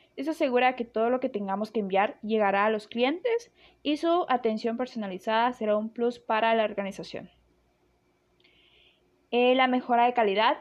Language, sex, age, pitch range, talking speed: Spanish, female, 20-39, 205-255 Hz, 160 wpm